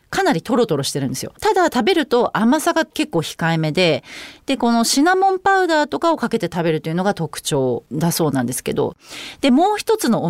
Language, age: Japanese, 40-59